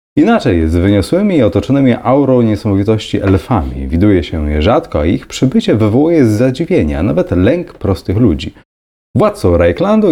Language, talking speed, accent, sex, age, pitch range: Polish, 150 wpm, native, male, 30-49, 100-160 Hz